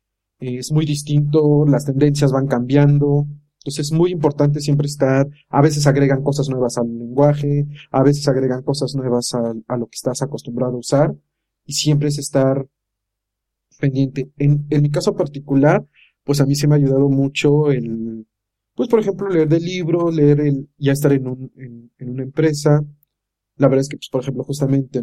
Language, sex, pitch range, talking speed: Spanish, male, 130-150 Hz, 180 wpm